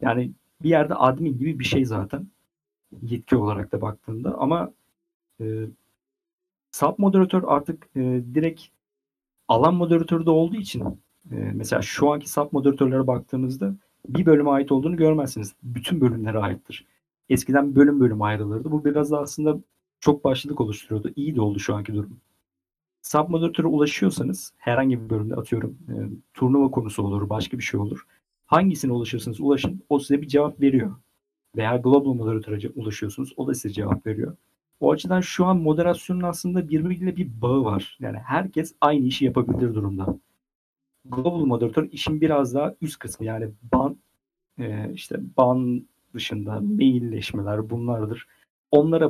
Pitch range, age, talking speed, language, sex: 110-150 Hz, 50-69, 145 wpm, Turkish, male